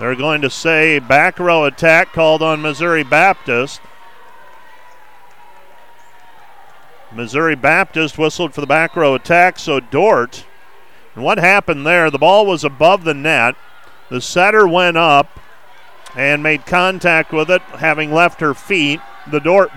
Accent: American